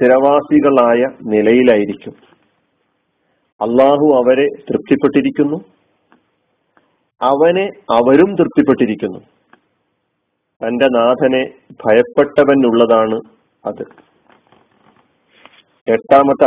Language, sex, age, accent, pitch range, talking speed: Malayalam, male, 40-59, native, 120-150 Hz, 45 wpm